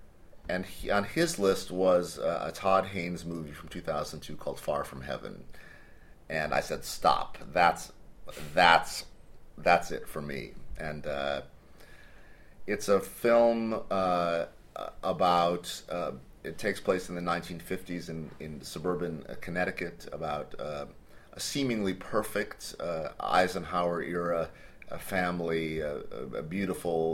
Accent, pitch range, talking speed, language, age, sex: American, 75-90 Hz, 130 wpm, English, 30-49, male